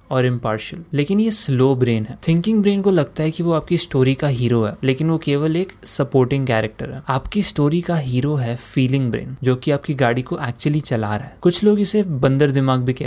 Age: 20-39